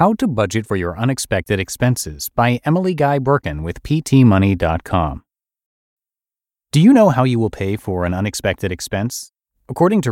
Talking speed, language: 150 wpm, English